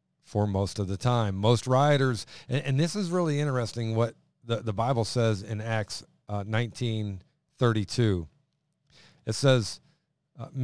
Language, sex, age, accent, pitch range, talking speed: English, male, 50-69, American, 105-135 Hz, 150 wpm